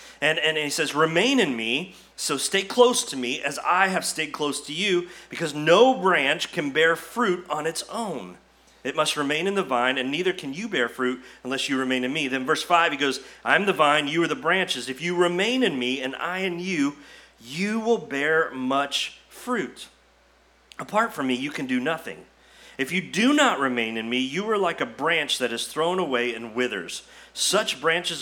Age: 40-59